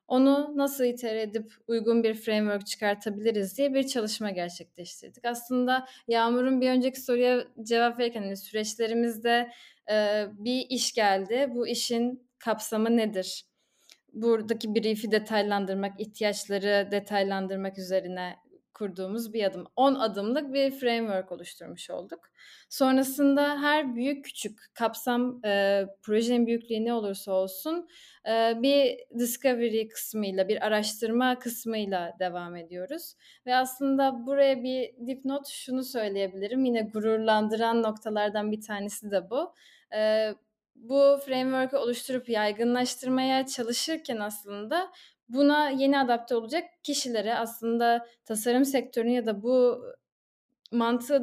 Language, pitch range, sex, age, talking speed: Turkish, 215-255 Hz, female, 10-29, 110 wpm